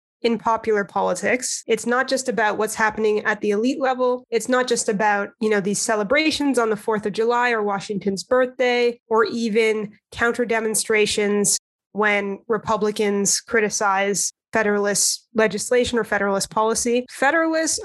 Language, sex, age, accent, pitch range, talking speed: English, female, 20-39, American, 210-245 Hz, 140 wpm